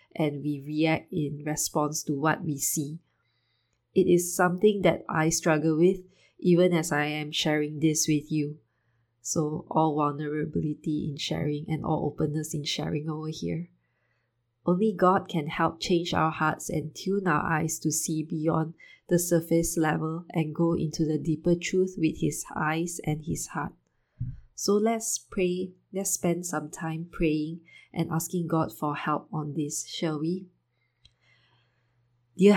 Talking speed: 155 wpm